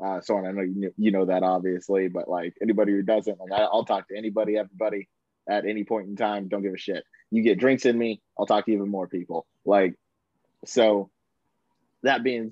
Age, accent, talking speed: 20-39, American, 220 wpm